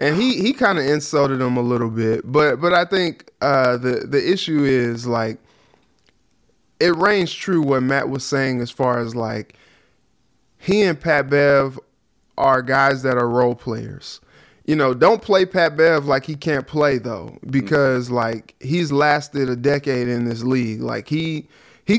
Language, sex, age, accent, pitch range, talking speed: English, male, 20-39, American, 125-155 Hz, 175 wpm